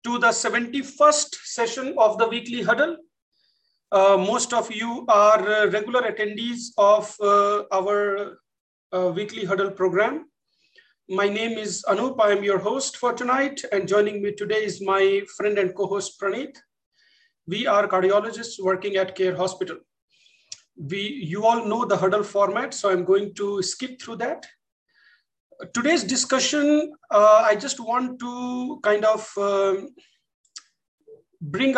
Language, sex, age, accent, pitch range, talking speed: English, male, 40-59, Indian, 200-255 Hz, 140 wpm